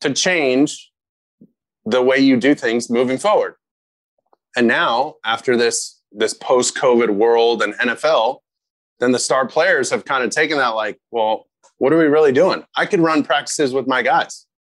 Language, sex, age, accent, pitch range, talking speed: English, male, 30-49, American, 125-180 Hz, 165 wpm